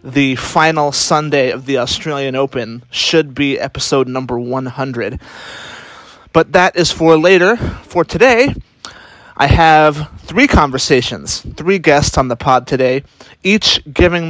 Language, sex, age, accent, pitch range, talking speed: English, male, 30-49, American, 135-155 Hz, 130 wpm